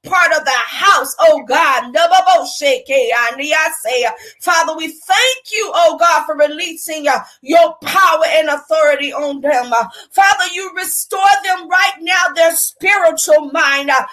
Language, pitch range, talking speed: English, 320-415 Hz, 125 wpm